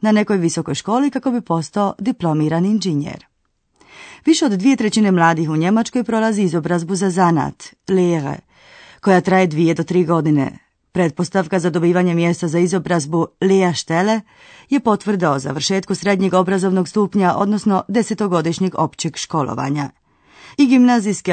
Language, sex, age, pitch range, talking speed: Croatian, female, 30-49, 160-200 Hz, 130 wpm